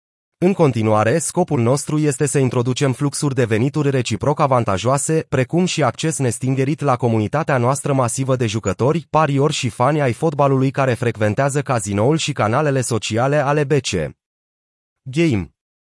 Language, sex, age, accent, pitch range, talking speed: Romanian, male, 30-49, native, 115-150 Hz, 135 wpm